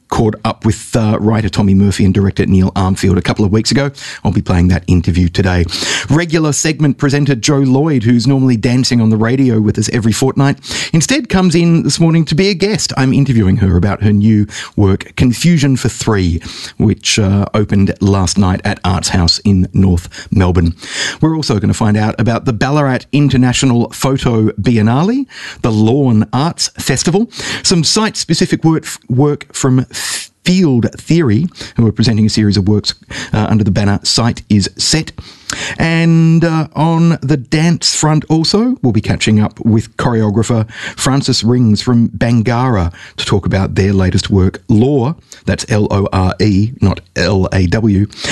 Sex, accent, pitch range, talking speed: male, Australian, 100-140 Hz, 165 wpm